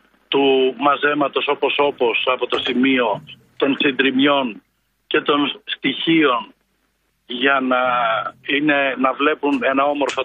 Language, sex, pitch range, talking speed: Greek, male, 135-170 Hz, 105 wpm